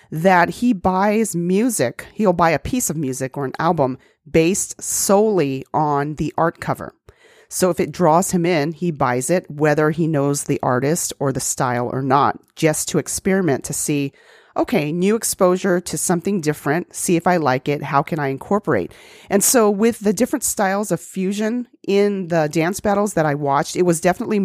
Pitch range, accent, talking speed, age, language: 140-185 Hz, American, 185 wpm, 40-59, English